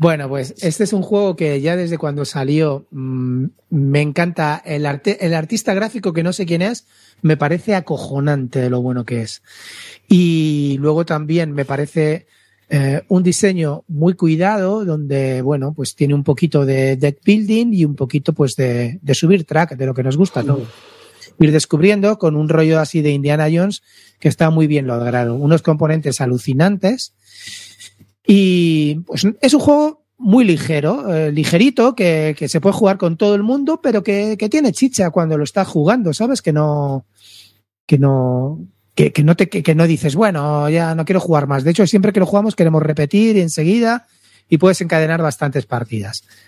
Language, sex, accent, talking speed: Spanish, male, Spanish, 180 wpm